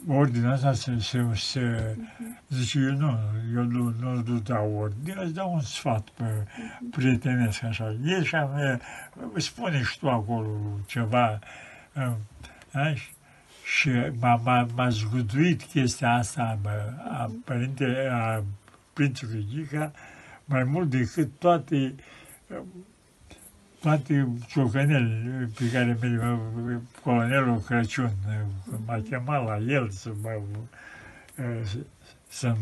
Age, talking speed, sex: 60-79, 115 wpm, male